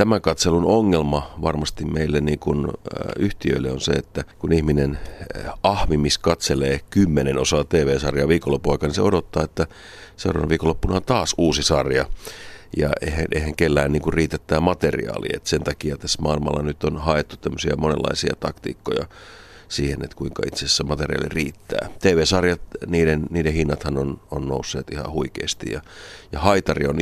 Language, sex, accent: Finnish, male, native